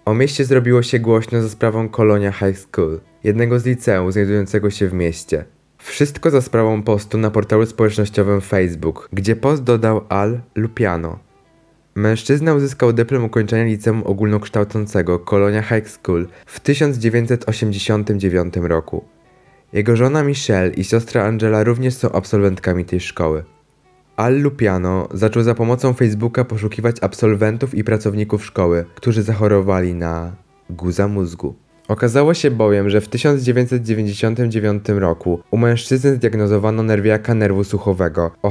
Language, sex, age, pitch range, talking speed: Polish, male, 20-39, 95-120 Hz, 130 wpm